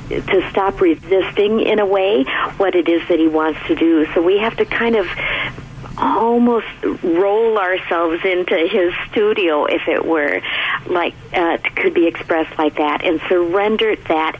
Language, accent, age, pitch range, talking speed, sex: English, American, 50-69, 160-225 Hz, 165 wpm, female